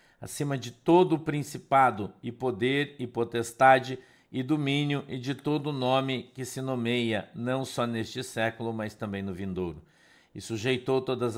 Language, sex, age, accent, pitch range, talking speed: Portuguese, male, 50-69, Brazilian, 110-130 Hz, 160 wpm